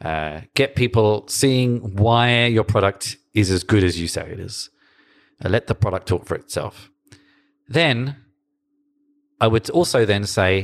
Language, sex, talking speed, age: English, male, 160 wpm, 40-59